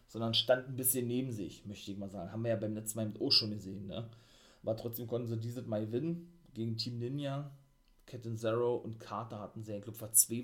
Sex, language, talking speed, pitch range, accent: male, German, 230 wpm, 115-145 Hz, German